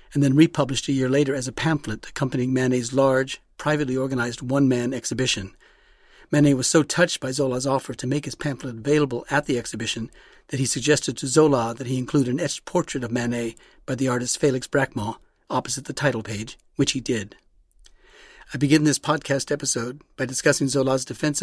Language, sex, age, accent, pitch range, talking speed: English, male, 40-59, American, 115-140 Hz, 180 wpm